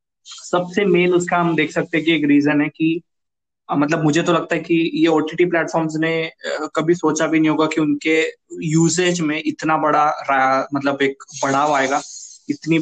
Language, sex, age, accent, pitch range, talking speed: Hindi, male, 20-39, native, 145-165 Hz, 180 wpm